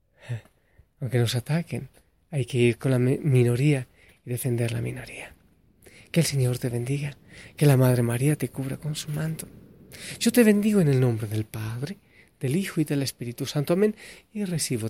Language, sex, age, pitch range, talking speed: Spanish, male, 30-49, 120-160 Hz, 175 wpm